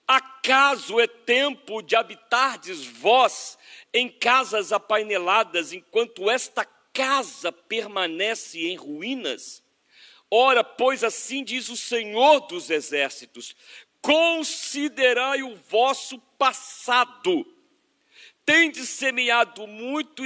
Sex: male